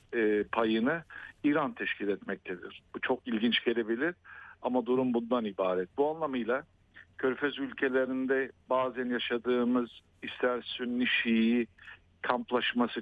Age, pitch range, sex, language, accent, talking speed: 50-69, 115-125 Hz, male, Turkish, native, 100 wpm